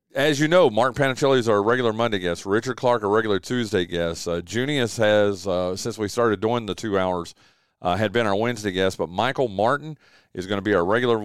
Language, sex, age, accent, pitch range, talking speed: English, male, 40-59, American, 100-130 Hz, 225 wpm